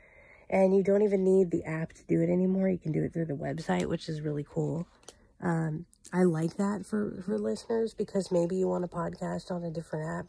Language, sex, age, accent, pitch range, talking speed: English, female, 30-49, American, 150-180 Hz, 225 wpm